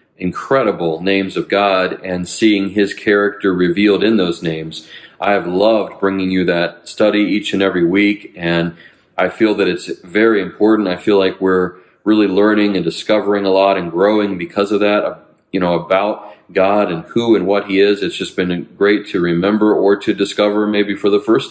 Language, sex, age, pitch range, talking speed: English, male, 40-59, 90-105 Hz, 190 wpm